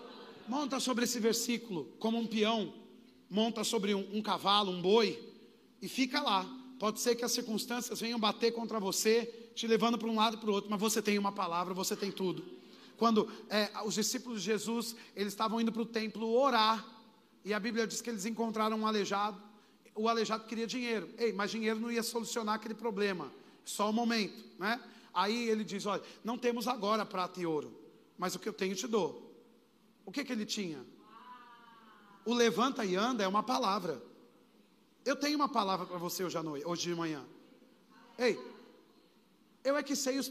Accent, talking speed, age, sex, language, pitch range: Brazilian, 190 wpm, 40-59, male, Portuguese, 200-235 Hz